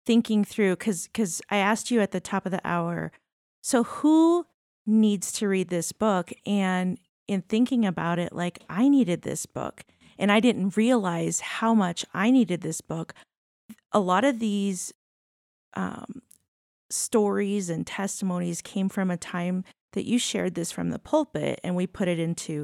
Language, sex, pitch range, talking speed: English, female, 175-215 Hz, 170 wpm